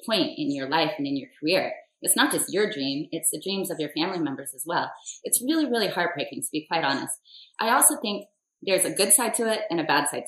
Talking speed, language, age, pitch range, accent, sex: 250 wpm, English, 20-39, 165-220 Hz, American, female